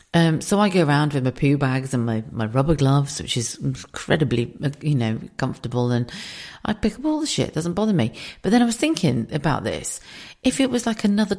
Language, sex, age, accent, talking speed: English, female, 40-59, British, 225 wpm